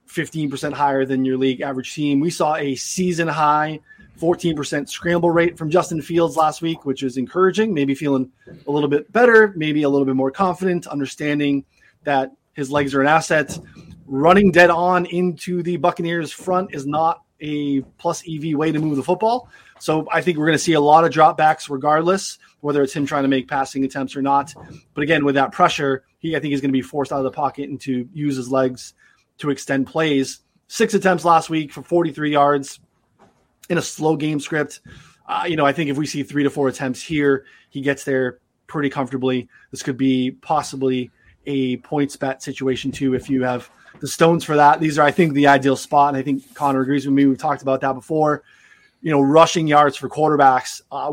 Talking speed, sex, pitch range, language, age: 205 wpm, male, 135-160 Hz, English, 20-39